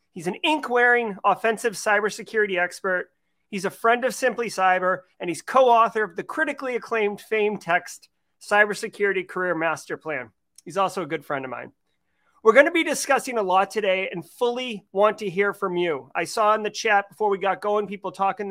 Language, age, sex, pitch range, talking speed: English, 30-49, male, 185-225 Hz, 185 wpm